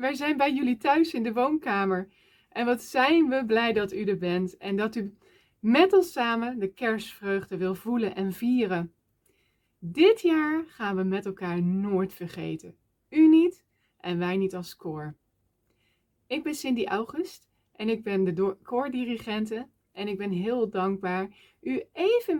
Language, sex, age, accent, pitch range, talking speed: Dutch, female, 20-39, Dutch, 180-255 Hz, 160 wpm